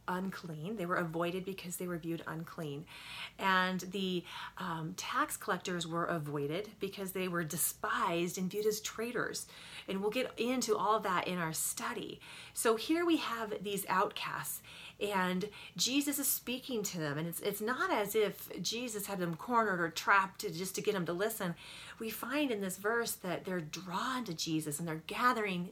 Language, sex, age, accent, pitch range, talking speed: English, female, 30-49, American, 170-215 Hz, 180 wpm